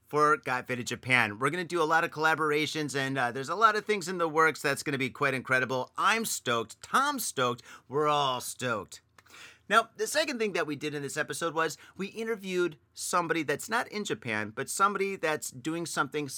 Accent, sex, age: American, male, 30-49